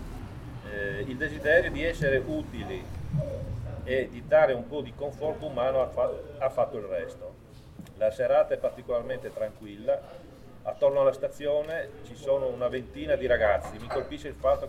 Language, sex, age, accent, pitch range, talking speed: Italian, male, 40-59, native, 120-205 Hz, 145 wpm